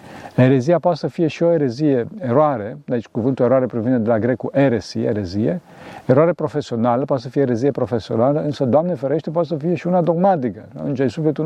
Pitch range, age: 120-150 Hz, 50-69